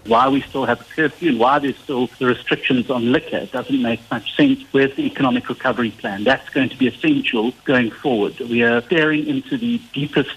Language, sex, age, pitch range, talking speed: English, male, 60-79, 120-170 Hz, 210 wpm